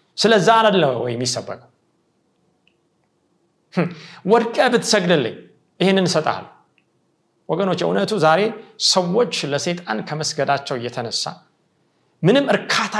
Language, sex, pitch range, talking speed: Amharic, male, 140-210 Hz, 90 wpm